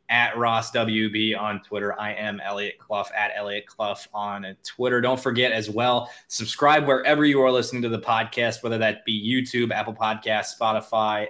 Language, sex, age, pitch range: English, male, 20-39, 110-125 Hz